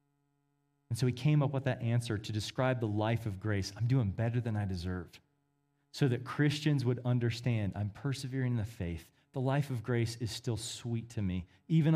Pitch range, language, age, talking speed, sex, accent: 120-155 Hz, English, 30-49, 200 wpm, male, American